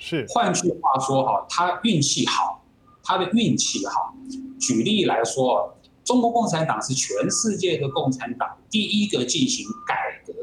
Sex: male